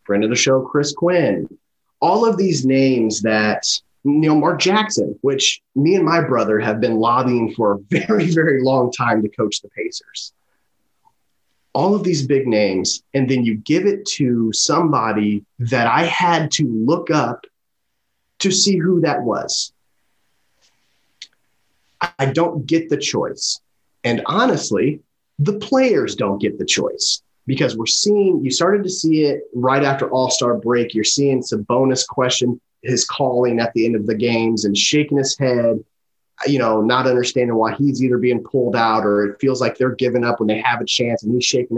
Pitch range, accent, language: 115-155 Hz, American, English